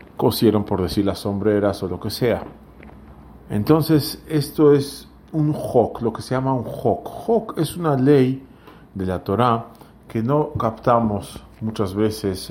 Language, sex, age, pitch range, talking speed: English, male, 40-59, 95-125 Hz, 155 wpm